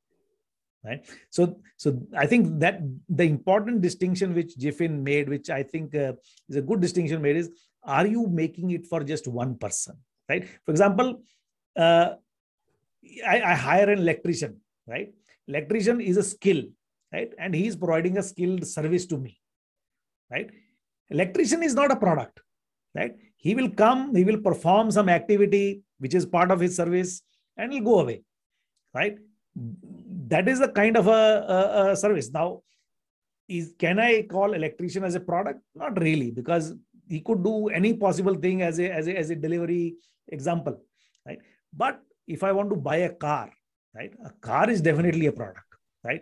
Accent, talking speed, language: Indian, 170 wpm, English